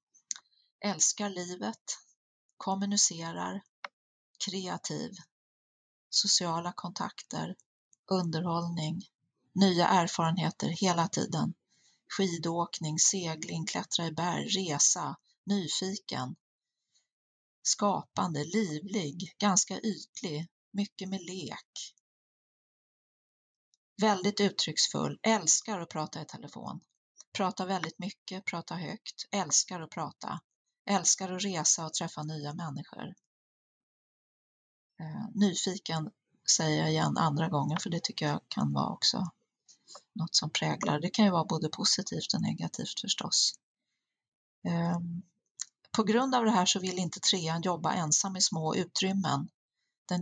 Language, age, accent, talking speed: Swedish, 40-59, native, 105 wpm